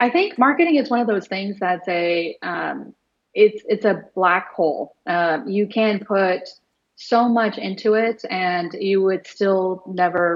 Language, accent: English, American